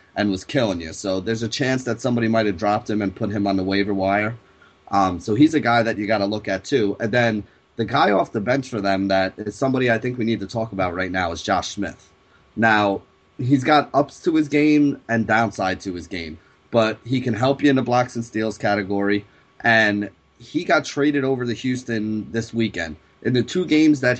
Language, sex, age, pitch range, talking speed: English, male, 30-49, 100-120 Hz, 235 wpm